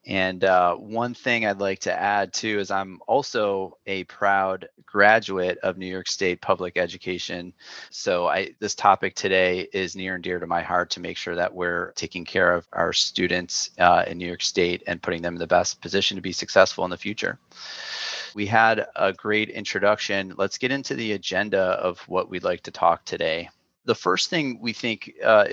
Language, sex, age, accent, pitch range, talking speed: English, male, 30-49, American, 90-105 Hz, 195 wpm